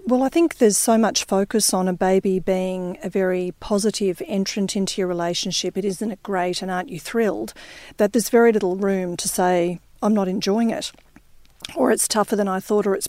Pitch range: 185-215 Hz